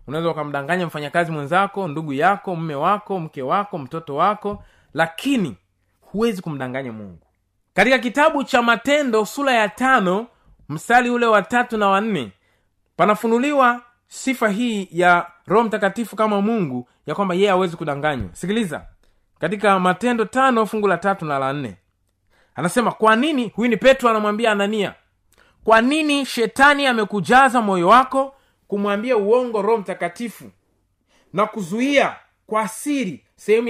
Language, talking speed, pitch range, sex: Swahili, 130 wpm, 165-235 Hz, male